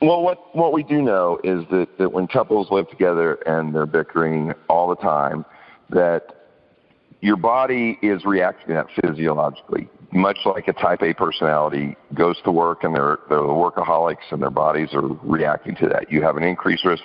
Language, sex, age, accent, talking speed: English, male, 50-69, American, 185 wpm